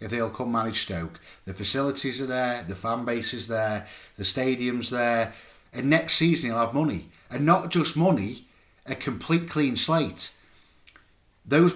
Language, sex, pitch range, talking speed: English, male, 115-155 Hz, 165 wpm